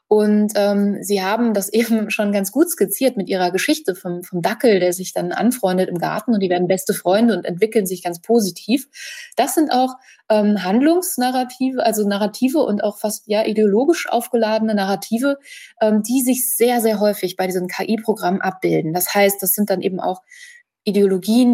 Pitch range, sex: 200-240 Hz, female